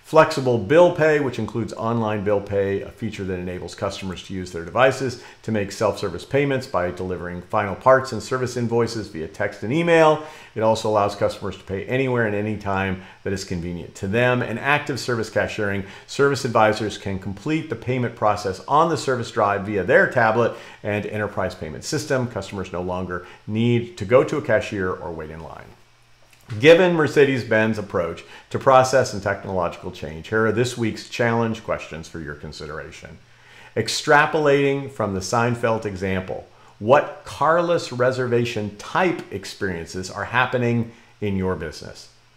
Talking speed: 160 wpm